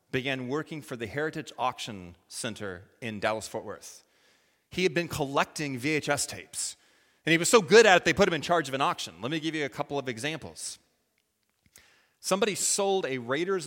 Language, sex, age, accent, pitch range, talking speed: English, male, 30-49, American, 115-175 Hz, 190 wpm